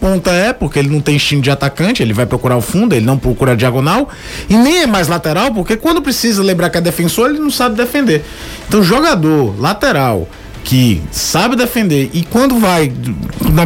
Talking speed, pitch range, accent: 200 wpm, 135-200 Hz, Brazilian